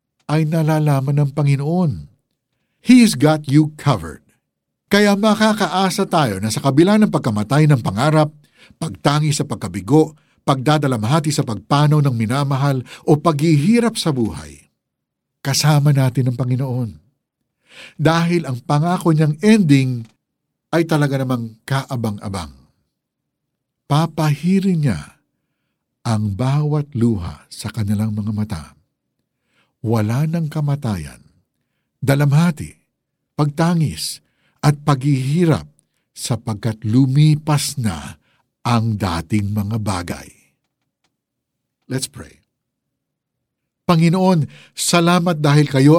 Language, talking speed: Filipino, 95 wpm